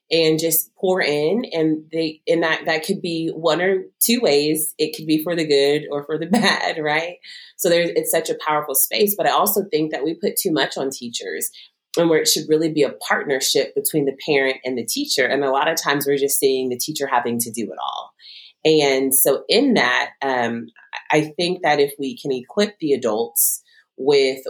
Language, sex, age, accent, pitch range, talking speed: English, female, 30-49, American, 135-185 Hz, 215 wpm